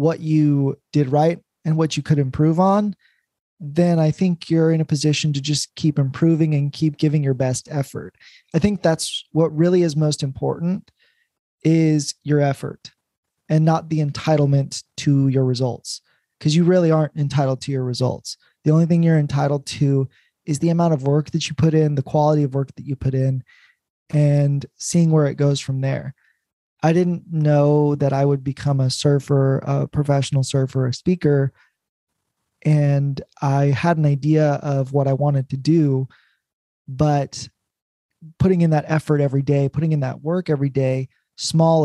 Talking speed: 175 wpm